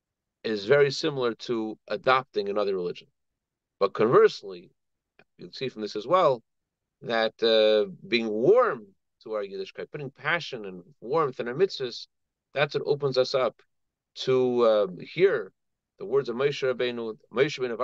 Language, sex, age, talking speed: English, male, 40-59, 150 wpm